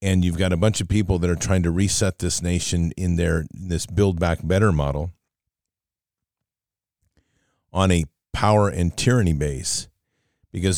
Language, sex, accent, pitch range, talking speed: English, male, American, 85-105 Hz, 155 wpm